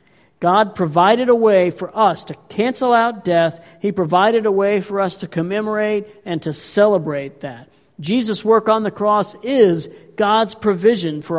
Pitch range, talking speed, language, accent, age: 185-225 Hz, 165 wpm, English, American, 50-69